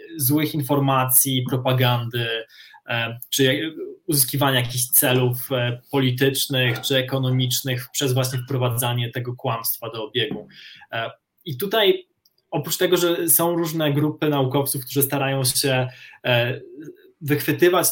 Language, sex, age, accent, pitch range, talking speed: Polish, male, 20-39, native, 130-155 Hz, 100 wpm